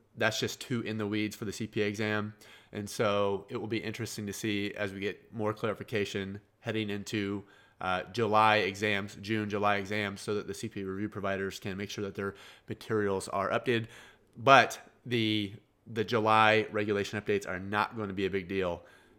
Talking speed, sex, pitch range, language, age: 185 wpm, male, 105-125 Hz, English, 30-49